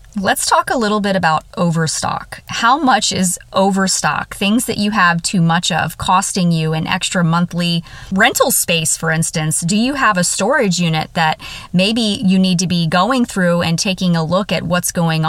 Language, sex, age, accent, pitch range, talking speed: English, female, 30-49, American, 160-195 Hz, 190 wpm